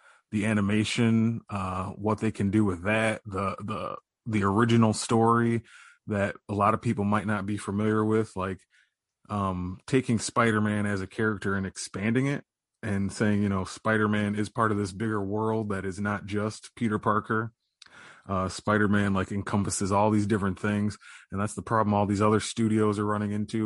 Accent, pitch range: American, 100-110 Hz